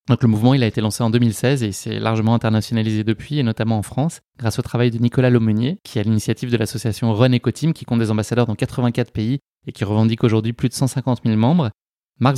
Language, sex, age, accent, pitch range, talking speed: French, male, 20-39, French, 115-130 Hz, 240 wpm